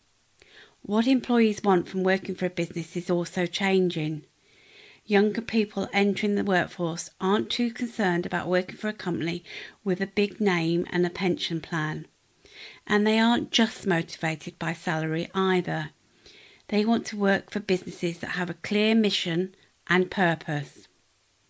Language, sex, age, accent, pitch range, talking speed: English, female, 50-69, British, 175-215 Hz, 150 wpm